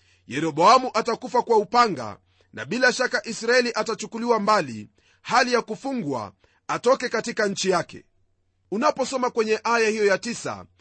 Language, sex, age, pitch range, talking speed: Swahili, male, 40-59, 175-240 Hz, 130 wpm